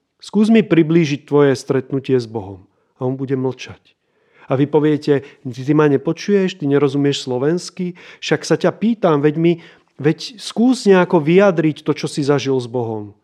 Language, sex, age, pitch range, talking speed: Slovak, male, 30-49, 135-165 Hz, 165 wpm